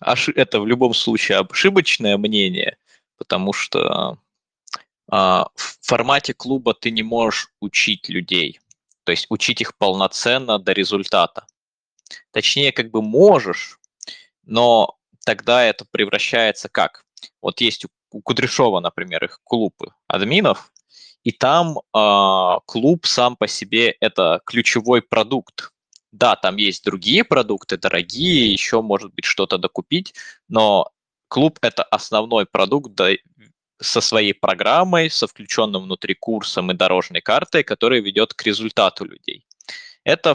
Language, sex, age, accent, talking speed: Russian, male, 20-39, native, 120 wpm